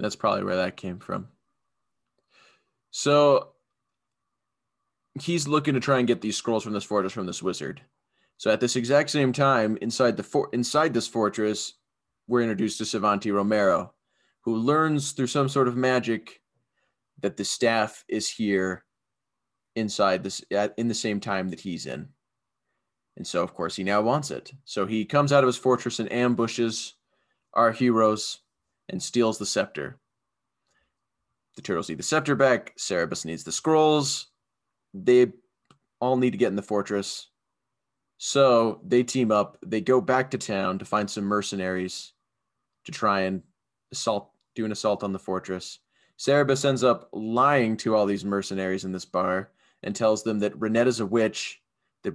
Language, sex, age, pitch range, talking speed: English, male, 20-39, 100-125 Hz, 165 wpm